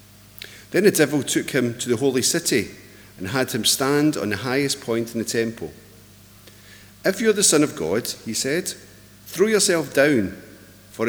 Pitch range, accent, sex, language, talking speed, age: 100-125 Hz, British, male, English, 180 wpm, 50-69